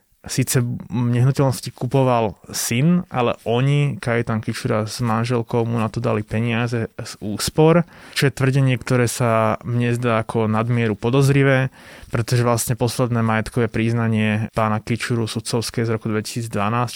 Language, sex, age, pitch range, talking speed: Slovak, male, 20-39, 115-130 Hz, 140 wpm